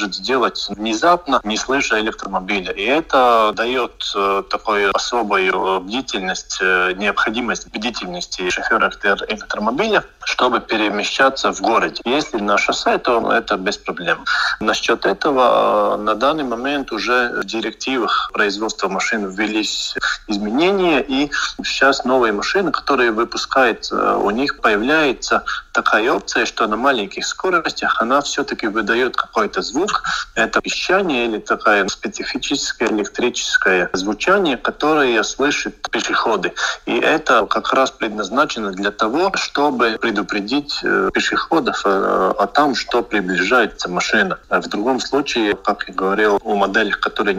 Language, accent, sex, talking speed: Russian, native, male, 120 wpm